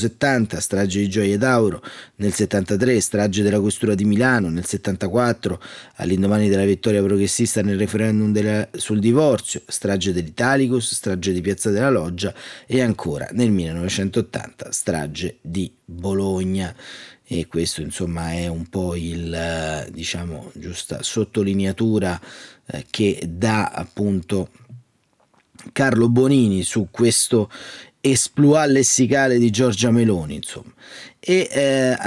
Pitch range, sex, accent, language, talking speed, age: 95-120 Hz, male, native, Italian, 120 wpm, 30-49